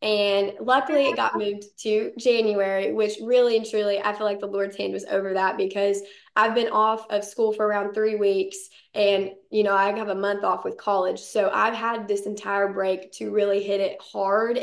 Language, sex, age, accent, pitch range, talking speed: English, female, 20-39, American, 200-235 Hz, 210 wpm